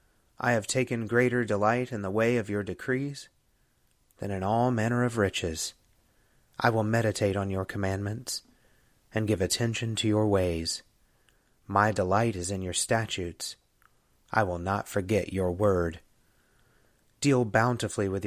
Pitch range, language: 100-120 Hz, English